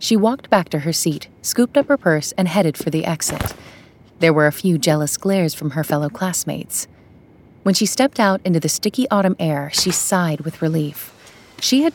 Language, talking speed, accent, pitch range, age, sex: English, 200 wpm, American, 155-200 Hz, 30-49, female